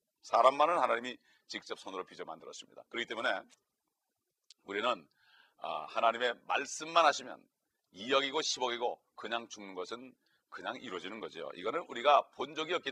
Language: Korean